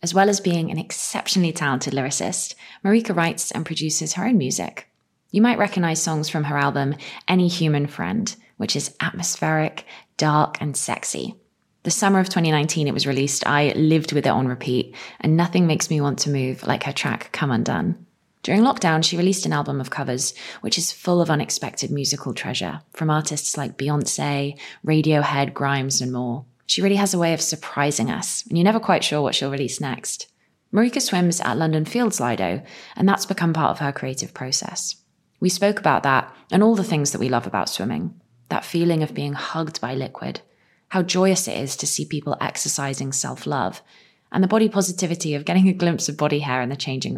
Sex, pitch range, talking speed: female, 140-185 Hz, 195 wpm